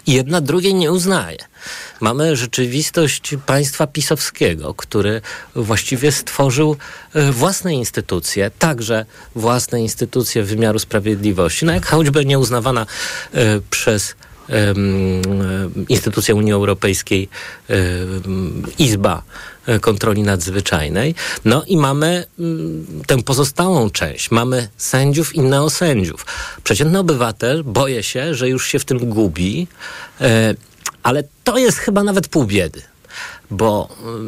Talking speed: 110 wpm